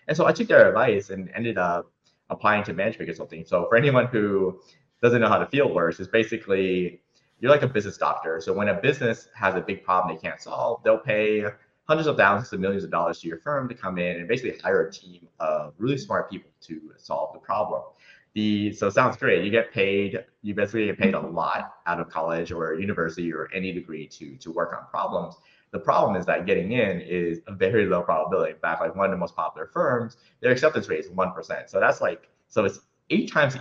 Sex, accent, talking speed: male, American, 230 wpm